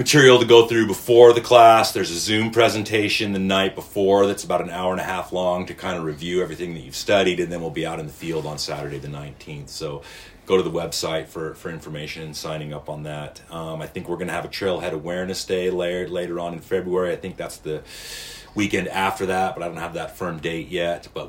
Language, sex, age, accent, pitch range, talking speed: English, male, 30-49, American, 80-95 Hz, 240 wpm